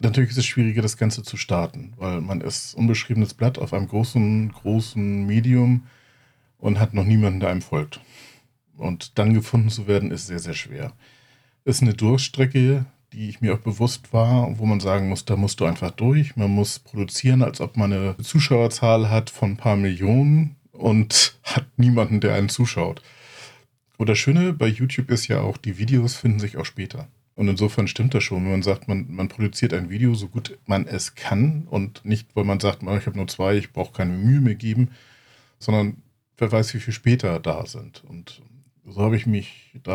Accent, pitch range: German, 100-125 Hz